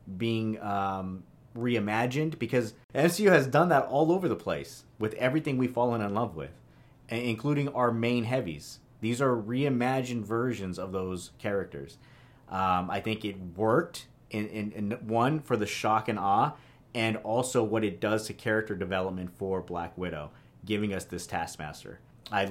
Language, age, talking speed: English, 30-49, 160 wpm